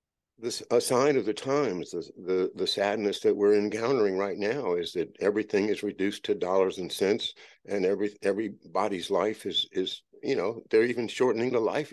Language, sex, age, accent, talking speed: English, male, 60-79, American, 185 wpm